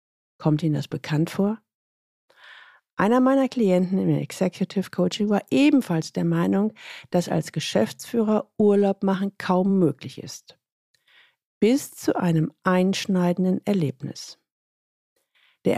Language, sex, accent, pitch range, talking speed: German, female, German, 170-225 Hz, 110 wpm